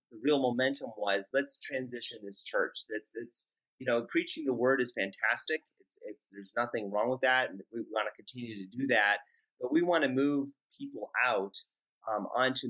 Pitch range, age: 115-155 Hz, 30-49